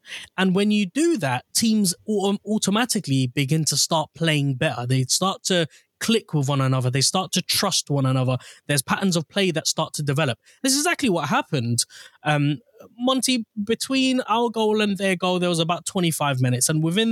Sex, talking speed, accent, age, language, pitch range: male, 185 wpm, British, 20-39, English, 145-180 Hz